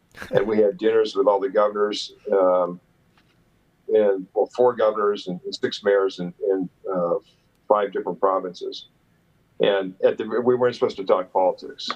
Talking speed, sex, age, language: 150 wpm, male, 50-69, English